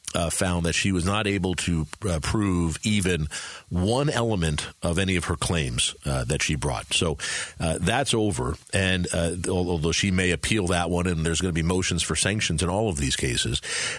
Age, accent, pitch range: 50-69, American, 85-115 Hz